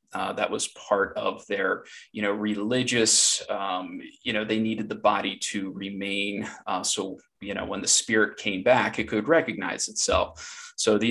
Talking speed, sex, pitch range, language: 180 wpm, male, 100-120 Hz, English